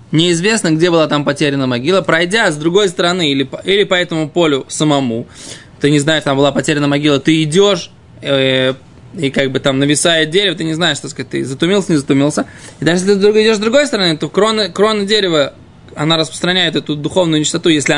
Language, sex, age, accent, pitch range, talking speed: Russian, male, 20-39, native, 155-195 Hz, 195 wpm